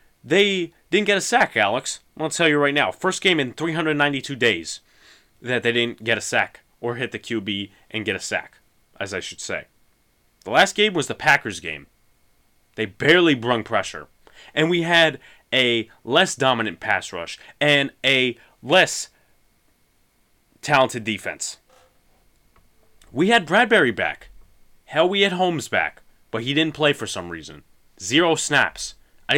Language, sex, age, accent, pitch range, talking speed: English, male, 30-49, American, 115-180 Hz, 155 wpm